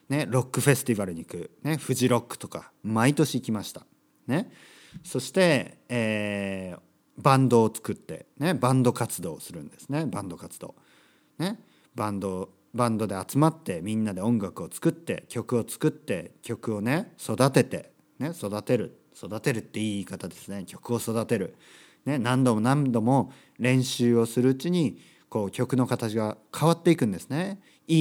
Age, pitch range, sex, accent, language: 40-59, 105-150 Hz, male, native, Japanese